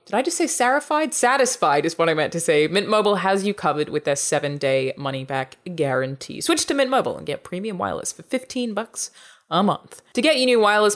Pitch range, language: 150-220 Hz, English